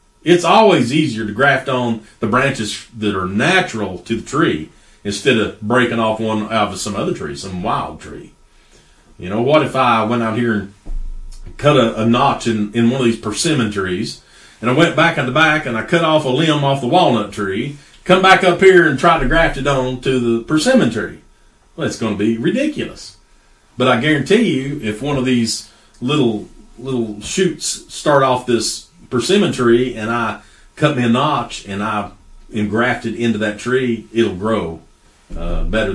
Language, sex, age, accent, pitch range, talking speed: English, male, 40-59, American, 110-145 Hz, 195 wpm